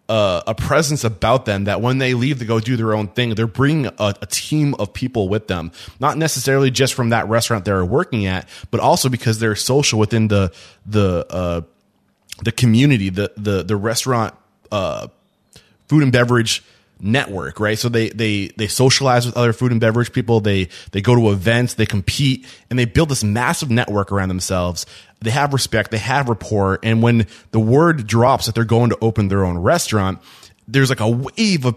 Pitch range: 100-130 Hz